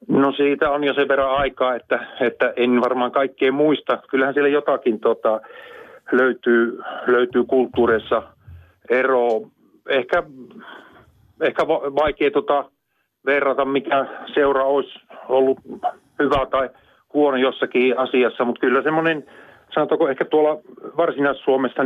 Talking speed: 120 wpm